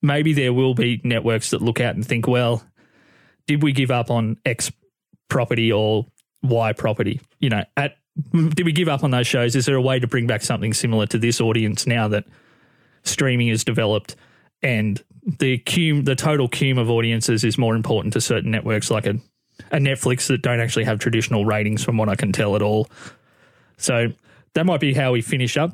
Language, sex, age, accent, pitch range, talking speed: English, male, 20-39, Australian, 115-145 Hz, 205 wpm